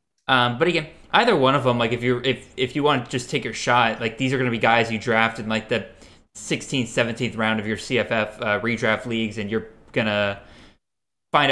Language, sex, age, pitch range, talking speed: English, male, 20-39, 110-130 Hz, 230 wpm